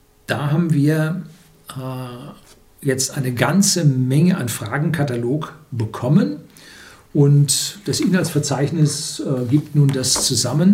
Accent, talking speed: German, 105 wpm